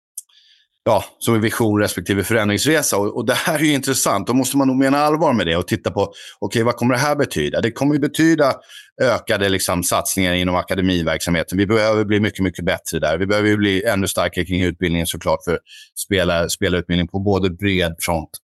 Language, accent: Swedish, native